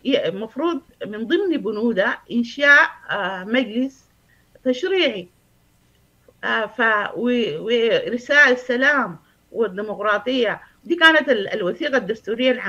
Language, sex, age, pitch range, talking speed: Arabic, female, 50-69, 210-290 Hz, 80 wpm